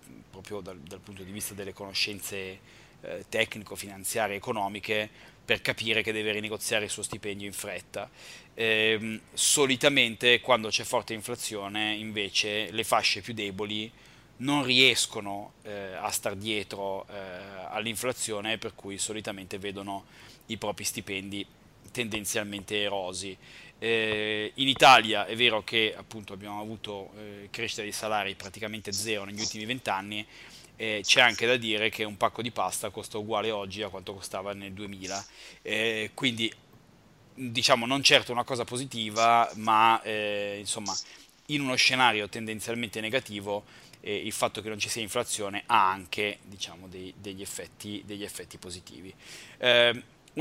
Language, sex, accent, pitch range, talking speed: Italian, male, native, 100-115 Hz, 140 wpm